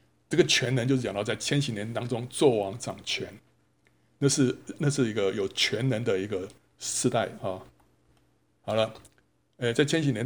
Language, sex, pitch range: Chinese, male, 105-135 Hz